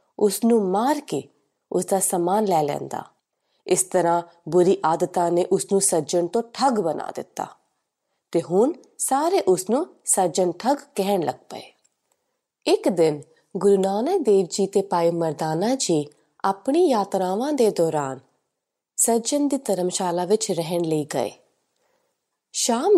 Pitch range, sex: 175-260 Hz, female